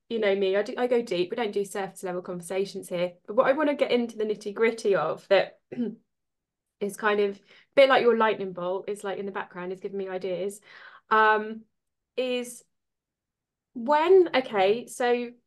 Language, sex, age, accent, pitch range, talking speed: English, female, 20-39, British, 195-235 Hz, 195 wpm